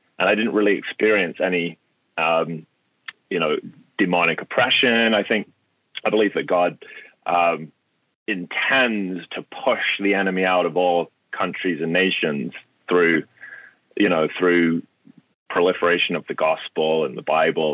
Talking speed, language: 135 wpm, English